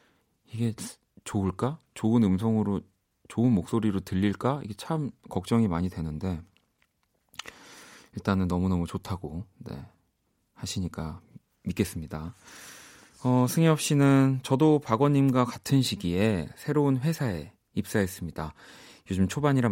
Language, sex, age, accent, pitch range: Korean, male, 30-49, native, 95-135 Hz